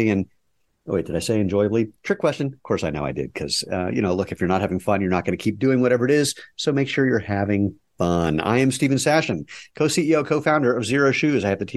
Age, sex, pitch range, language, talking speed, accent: 50-69, male, 90-120 Hz, English, 270 wpm, American